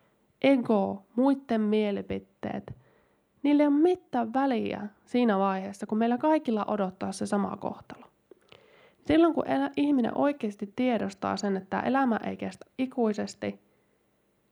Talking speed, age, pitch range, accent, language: 115 wpm, 20-39, 200-265 Hz, native, Finnish